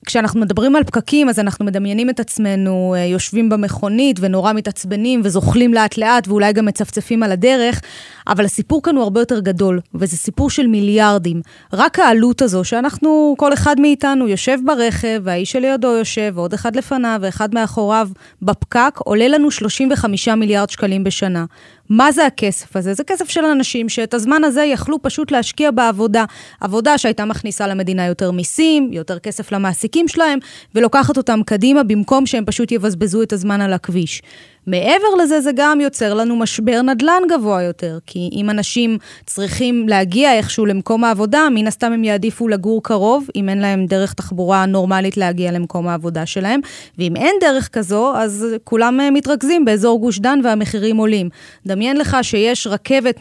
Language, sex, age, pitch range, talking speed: Hebrew, female, 20-39, 200-260 Hz, 160 wpm